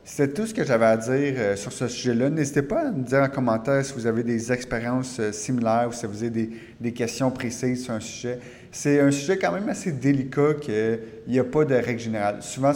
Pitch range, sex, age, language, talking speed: 120-140 Hz, male, 30-49, French, 245 wpm